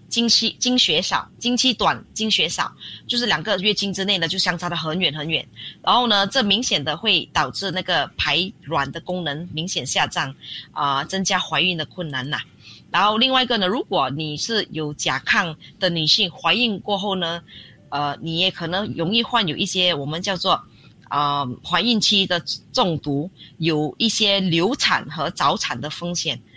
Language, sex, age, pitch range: Chinese, female, 20-39, 145-195 Hz